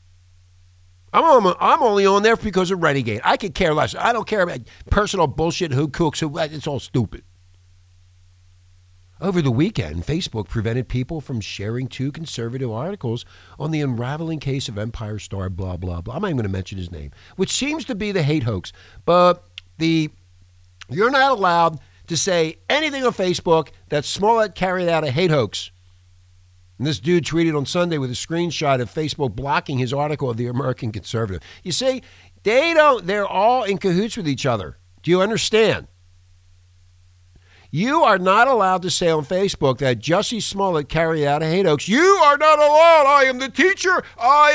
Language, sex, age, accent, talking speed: English, male, 50-69, American, 180 wpm